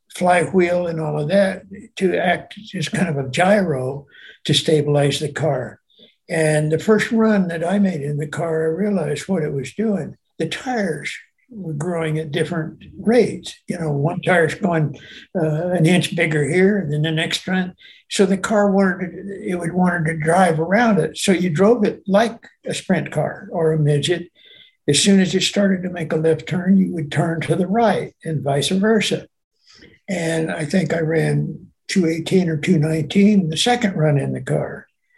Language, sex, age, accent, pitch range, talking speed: English, male, 60-79, American, 155-195 Hz, 180 wpm